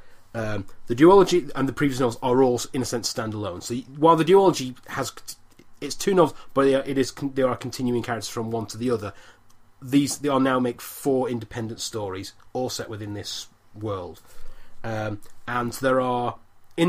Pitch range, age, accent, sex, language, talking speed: 105-130 Hz, 30-49, British, male, English, 190 wpm